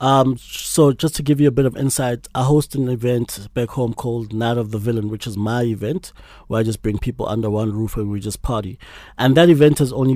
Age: 30-49